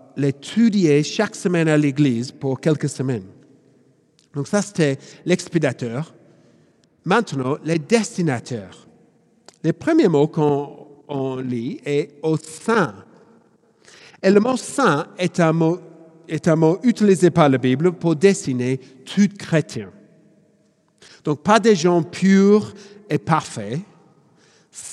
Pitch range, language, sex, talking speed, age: 135-180 Hz, French, male, 125 wpm, 50-69